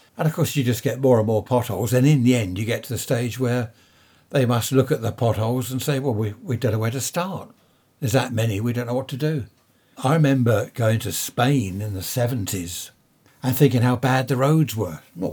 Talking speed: 235 wpm